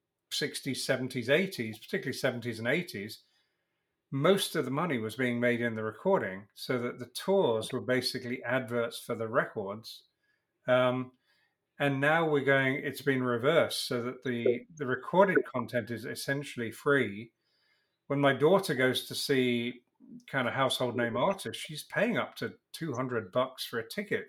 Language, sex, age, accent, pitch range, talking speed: English, male, 50-69, British, 120-145 Hz, 160 wpm